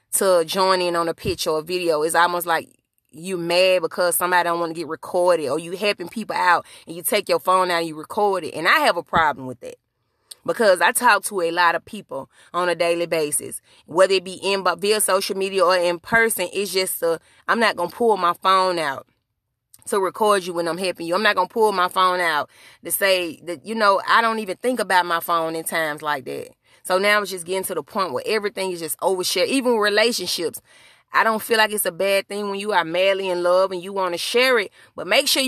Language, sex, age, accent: English, female, 30-49, American